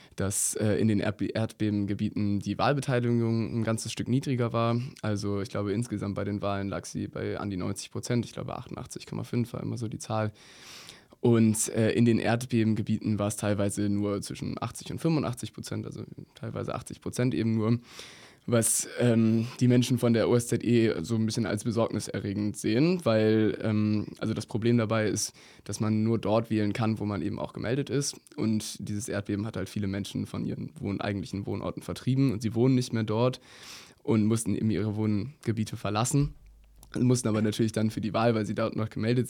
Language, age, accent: German, 20-39, German